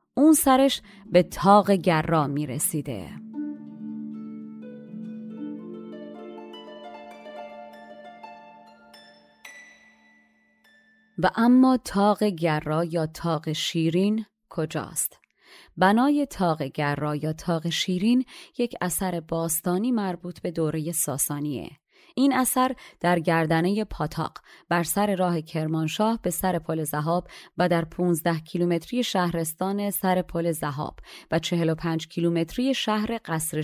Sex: female